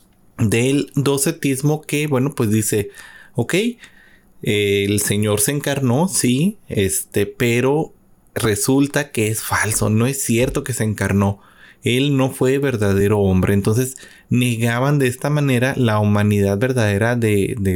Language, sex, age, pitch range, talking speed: Spanish, male, 30-49, 105-135 Hz, 135 wpm